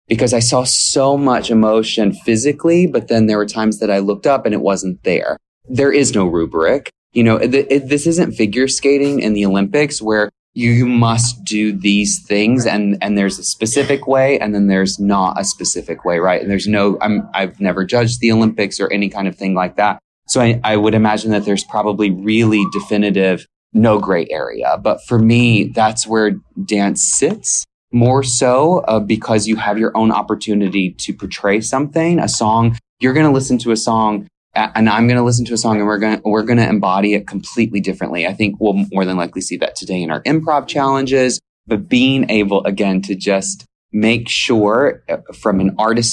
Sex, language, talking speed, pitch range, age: male, English, 200 wpm, 100-120 Hz, 20-39